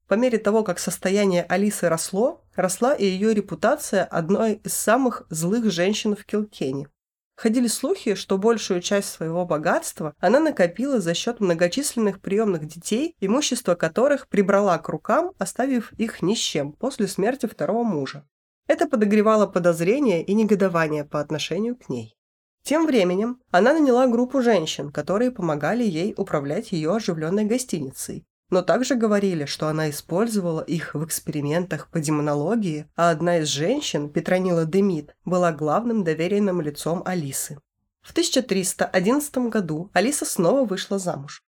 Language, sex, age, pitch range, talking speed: Russian, female, 20-39, 170-235 Hz, 140 wpm